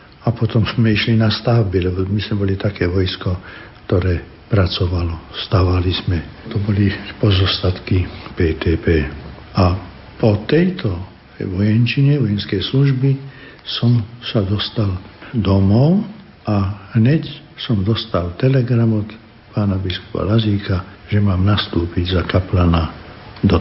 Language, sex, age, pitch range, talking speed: Slovak, male, 60-79, 95-115 Hz, 115 wpm